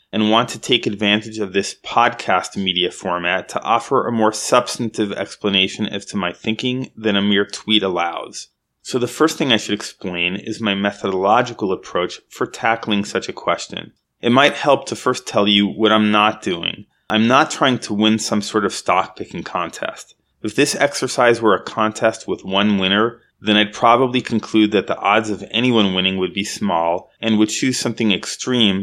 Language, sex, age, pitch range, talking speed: English, male, 30-49, 100-115 Hz, 185 wpm